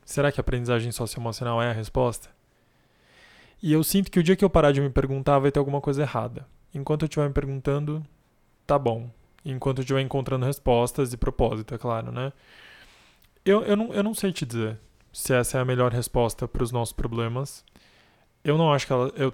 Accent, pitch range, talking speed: Brazilian, 120-140 Hz, 185 wpm